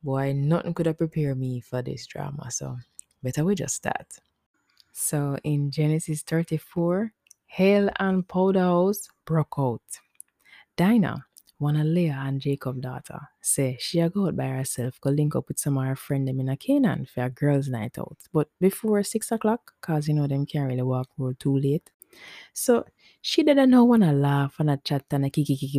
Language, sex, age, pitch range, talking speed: English, female, 20-39, 135-180 Hz, 195 wpm